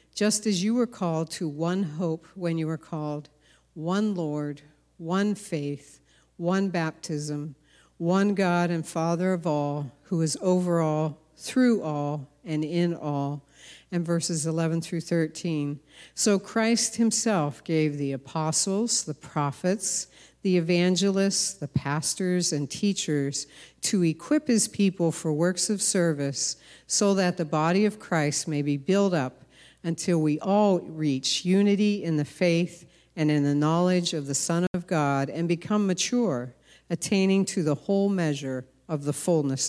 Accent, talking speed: American, 150 wpm